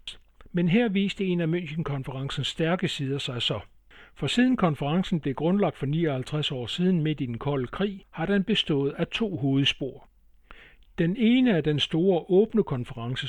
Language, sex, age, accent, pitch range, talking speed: Danish, male, 60-79, native, 135-180 Hz, 170 wpm